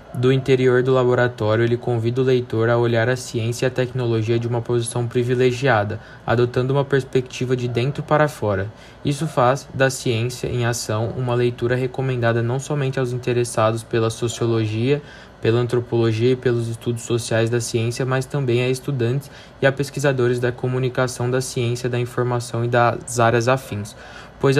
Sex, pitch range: male, 120-135 Hz